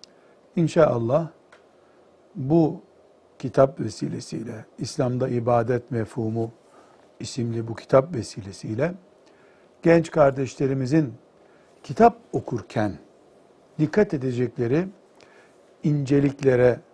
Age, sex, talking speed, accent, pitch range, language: 60-79, male, 65 wpm, native, 130-165 Hz, Turkish